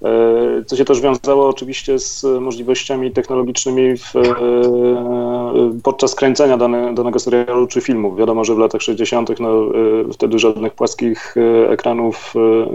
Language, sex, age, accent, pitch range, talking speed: Polish, male, 30-49, native, 115-130 Hz, 130 wpm